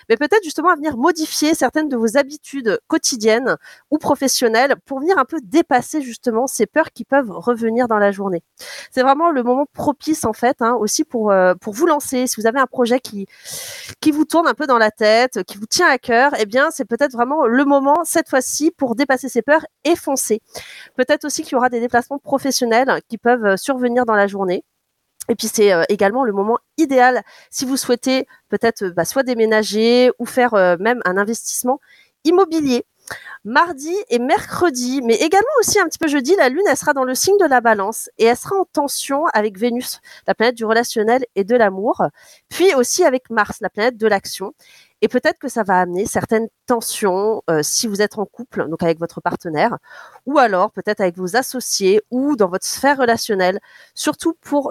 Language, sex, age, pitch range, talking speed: French, female, 30-49, 220-290 Hz, 200 wpm